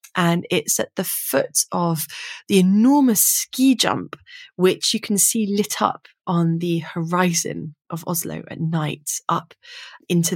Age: 20-39